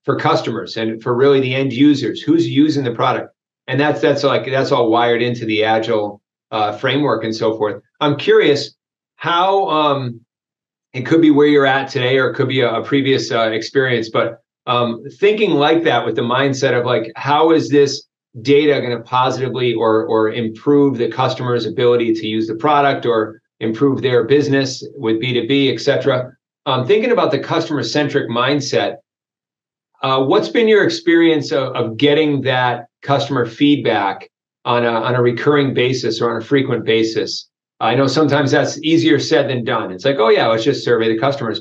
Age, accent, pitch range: 40-59, American, 115-145 Hz